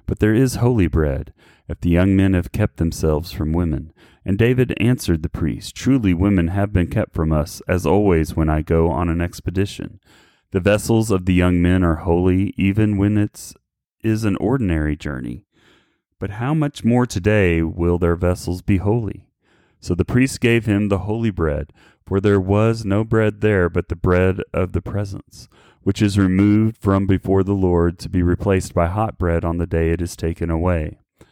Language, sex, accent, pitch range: English, male, American, 85-105 Hz